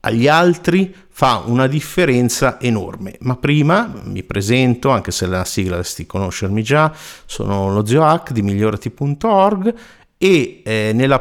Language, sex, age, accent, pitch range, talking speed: Italian, male, 50-69, native, 105-135 Hz, 135 wpm